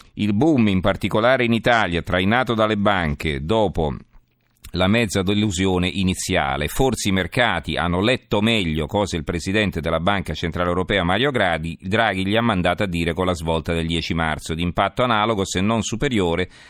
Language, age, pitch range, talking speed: Italian, 40-59, 85-110 Hz, 170 wpm